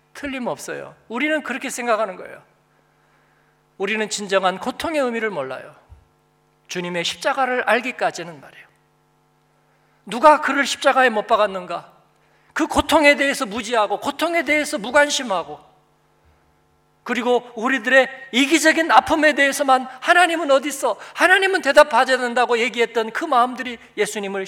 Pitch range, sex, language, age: 195-270 Hz, male, Korean, 40-59